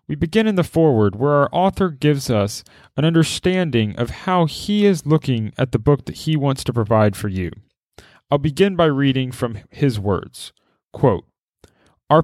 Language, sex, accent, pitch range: English, male, American, 115-160 Hz